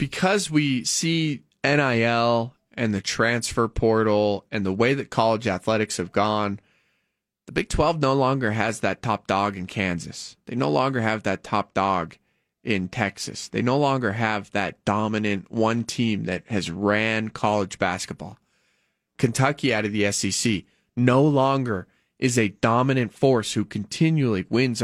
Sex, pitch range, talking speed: male, 105-130 Hz, 150 wpm